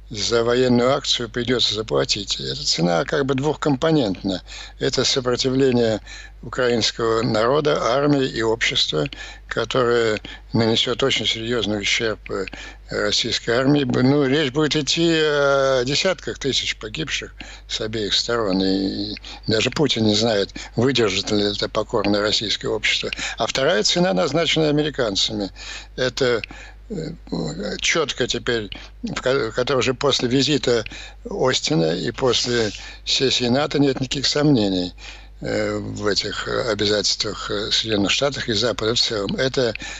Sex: male